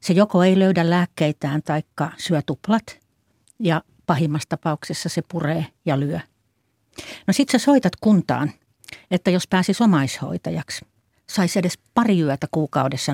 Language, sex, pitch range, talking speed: Finnish, female, 150-195 Hz, 130 wpm